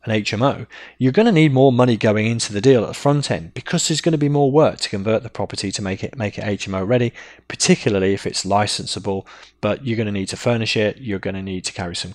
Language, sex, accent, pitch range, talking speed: English, male, British, 100-135 Hz, 260 wpm